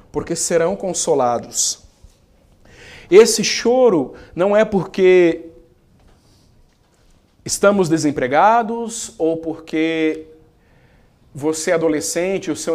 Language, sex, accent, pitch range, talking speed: Portuguese, male, Brazilian, 155-200 Hz, 80 wpm